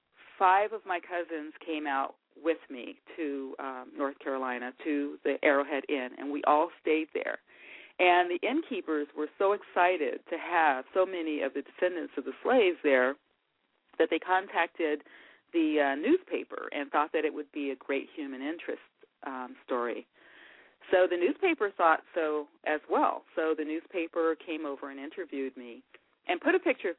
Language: English